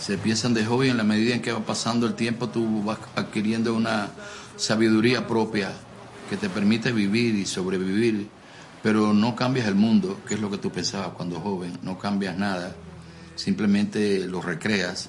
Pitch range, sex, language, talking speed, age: 95-115 Hz, male, Spanish, 175 wpm, 50-69